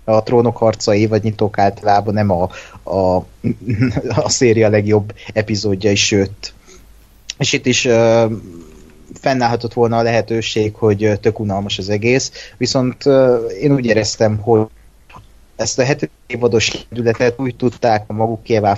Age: 20-39